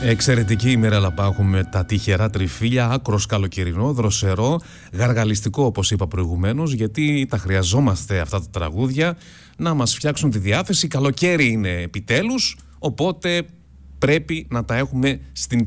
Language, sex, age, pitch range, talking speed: Greek, male, 30-49, 100-140 Hz, 130 wpm